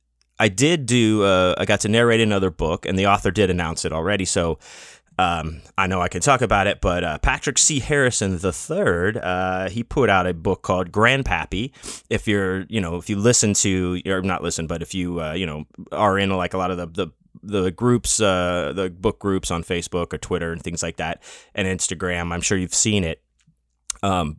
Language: English